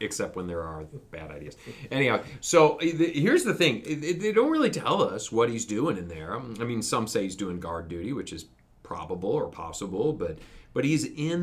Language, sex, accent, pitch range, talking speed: English, male, American, 85-135 Hz, 200 wpm